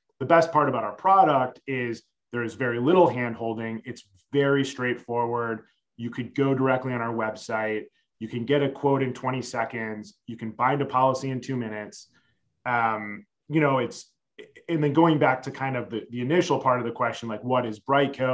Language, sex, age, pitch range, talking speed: English, male, 30-49, 120-145 Hz, 195 wpm